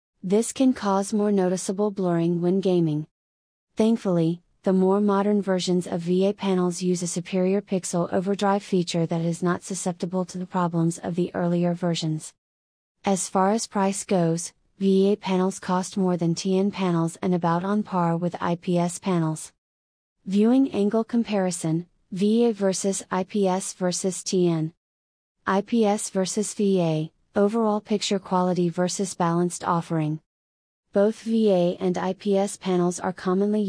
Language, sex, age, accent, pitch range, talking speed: English, female, 30-49, American, 175-200 Hz, 135 wpm